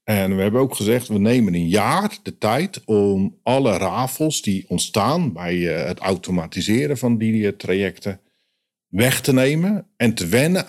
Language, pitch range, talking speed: Dutch, 95-120 Hz, 155 wpm